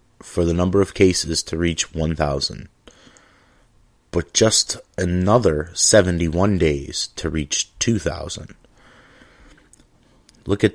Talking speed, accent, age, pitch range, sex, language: 100 wpm, American, 30-49, 80-100 Hz, male, English